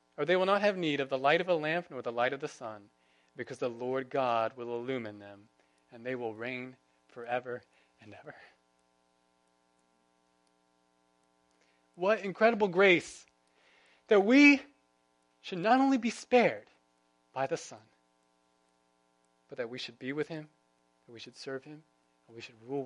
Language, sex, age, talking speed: English, male, 30-49, 160 wpm